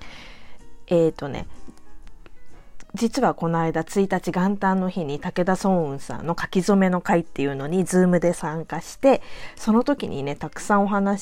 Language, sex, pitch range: Japanese, female, 150-225 Hz